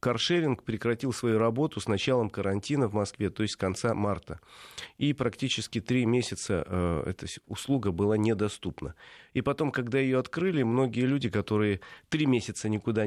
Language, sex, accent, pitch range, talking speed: Russian, male, native, 105-135 Hz, 155 wpm